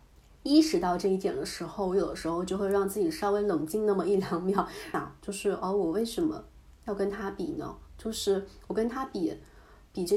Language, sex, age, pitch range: Chinese, female, 30-49, 180-240 Hz